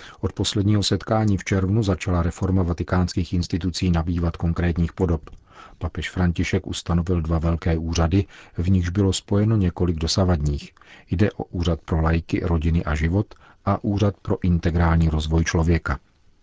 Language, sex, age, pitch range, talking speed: Czech, male, 40-59, 85-95 Hz, 140 wpm